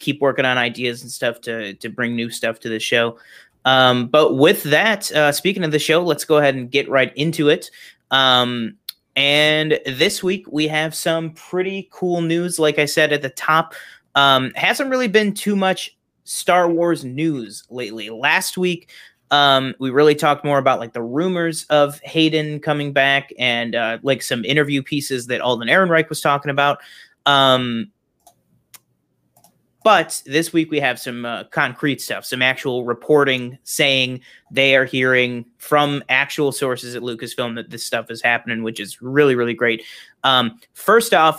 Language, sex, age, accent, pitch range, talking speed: English, male, 30-49, American, 125-155 Hz, 175 wpm